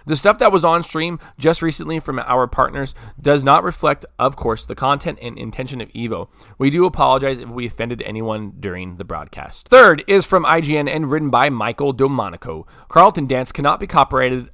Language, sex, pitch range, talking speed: English, male, 115-150 Hz, 190 wpm